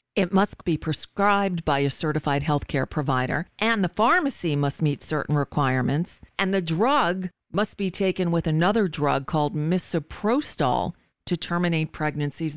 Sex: female